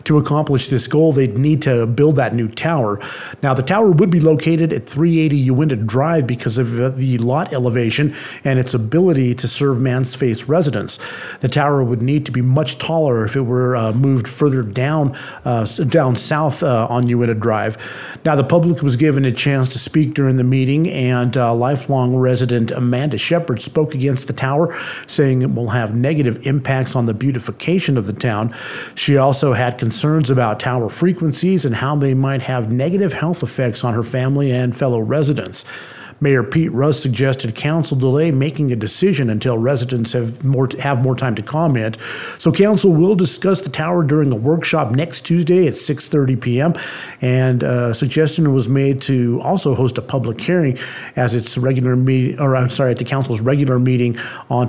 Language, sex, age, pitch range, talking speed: English, male, 50-69, 120-145 Hz, 185 wpm